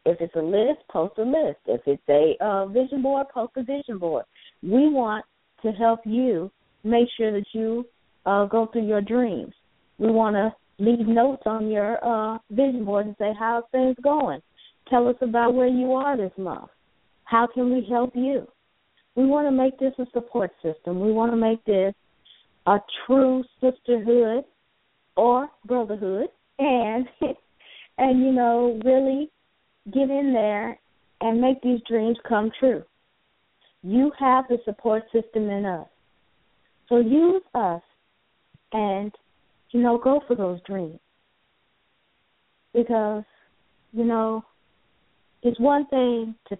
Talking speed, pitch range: 150 wpm, 195-250 Hz